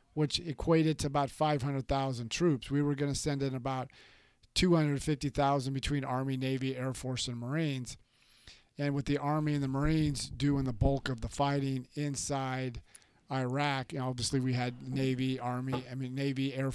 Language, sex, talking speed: English, male, 165 wpm